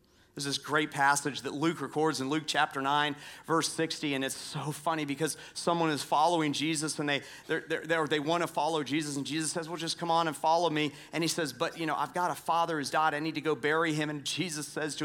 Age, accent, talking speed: 40-59, American, 250 wpm